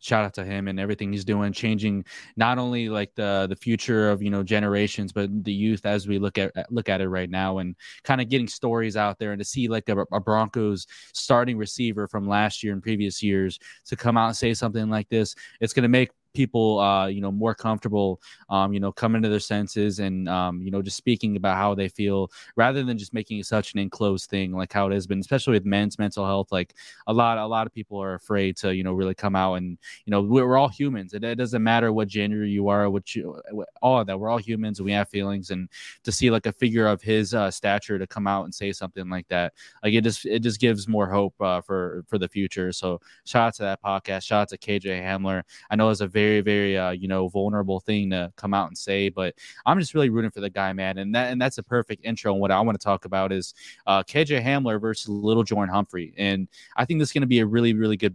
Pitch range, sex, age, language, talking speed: 95-110 Hz, male, 20-39, English, 255 wpm